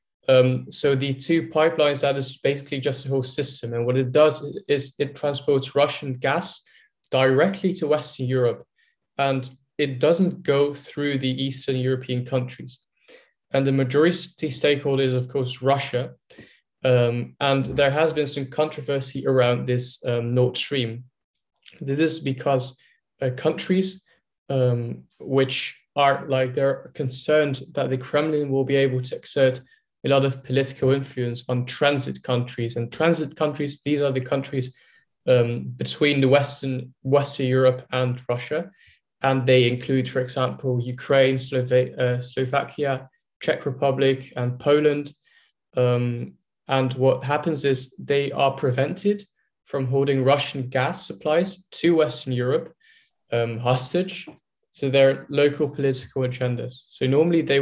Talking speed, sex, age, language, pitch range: 140 wpm, male, 20-39, English, 130-145 Hz